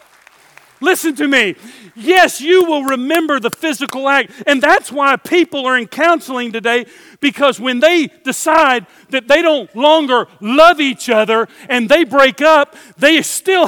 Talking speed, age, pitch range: 155 wpm, 50-69, 245-310 Hz